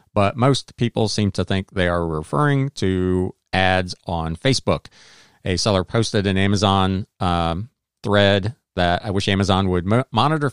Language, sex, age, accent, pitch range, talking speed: English, male, 40-59, American, 95-120 Hz, 150 wpm